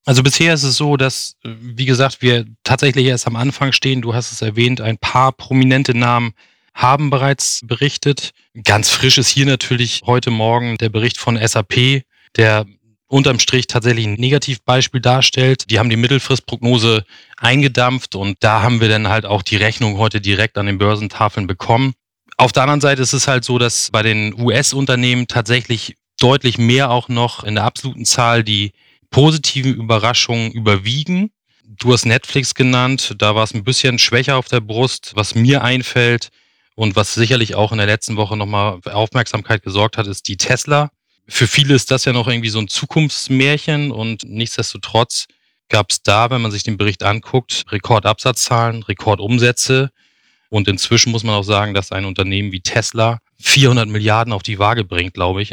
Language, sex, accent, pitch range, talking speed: German, male, German, 105-130 Hz, 175 wpm